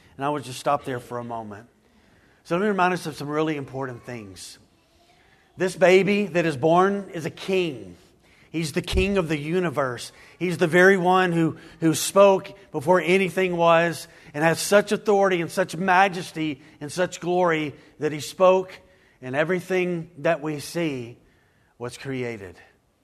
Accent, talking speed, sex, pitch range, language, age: American, 165 wpm, male, 140-180 Hz, English, 40-59